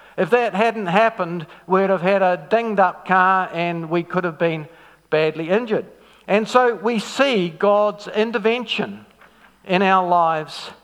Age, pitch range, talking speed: 50-69, 165-220 Hz, 150 wpm